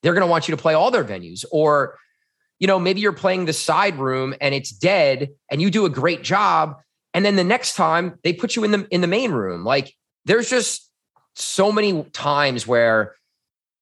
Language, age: English, 30-49